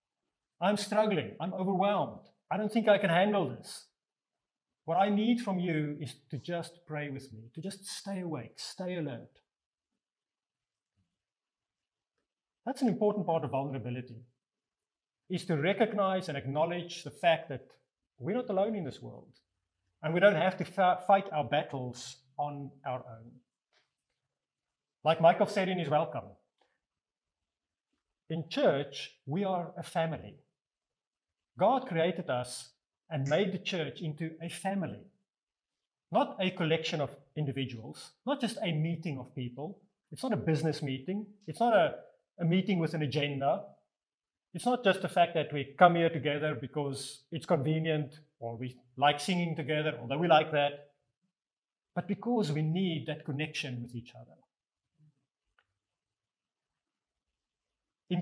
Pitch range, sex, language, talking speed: 140-190 Hz, male, English, 140 wpm